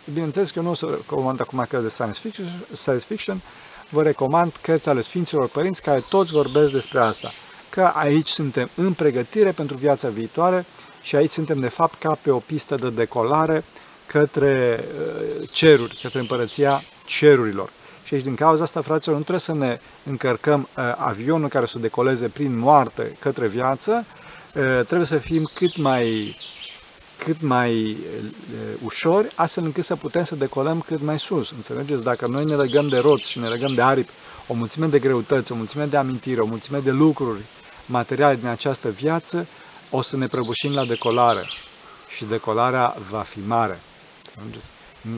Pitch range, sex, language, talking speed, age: 120-155 Hz, male, Romanian, 165 wpm, 40-59